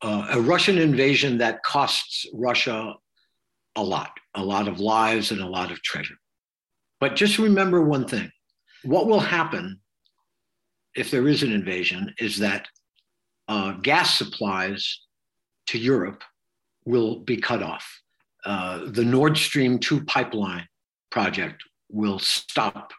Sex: male